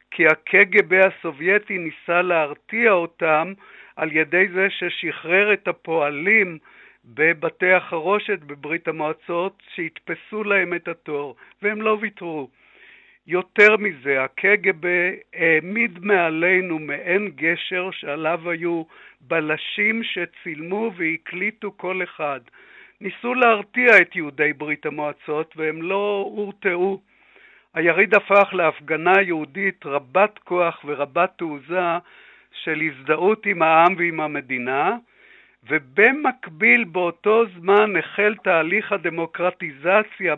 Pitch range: 155-200 Hz